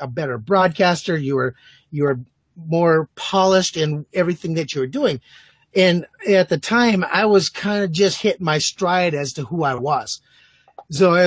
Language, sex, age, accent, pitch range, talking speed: English, male, 30-49, American, 165-210 Hz, 180 wpm